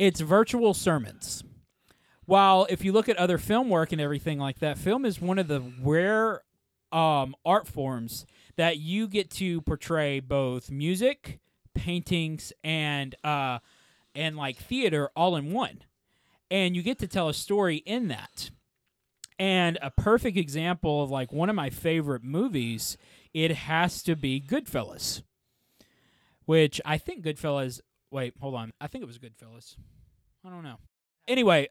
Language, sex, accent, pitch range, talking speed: English, male, American, 130-175 Hz, 155 wpm